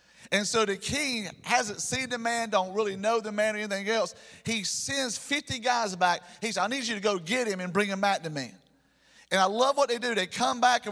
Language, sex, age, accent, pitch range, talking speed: English, male, 40-59, American, 180-225 Hz, 255 wpm